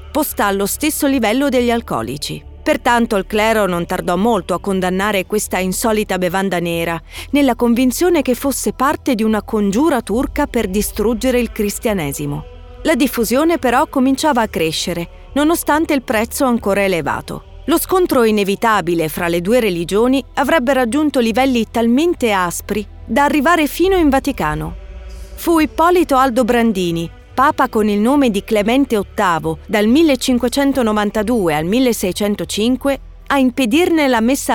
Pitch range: 195-265 Hz